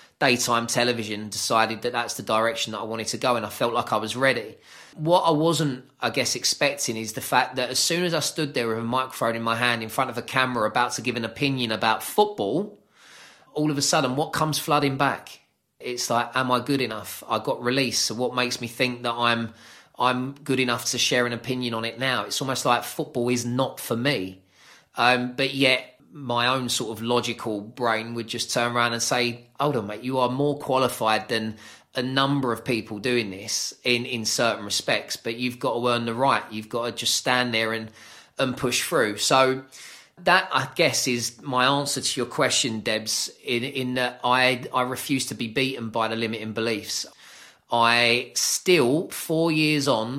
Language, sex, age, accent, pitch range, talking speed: English, male, 20-39, British, 115-130 Hz, 210 wpm